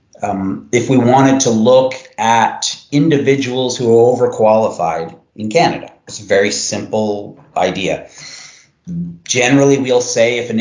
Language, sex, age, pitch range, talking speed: English, male, 30-49, 105-130 Hz, 130 wpm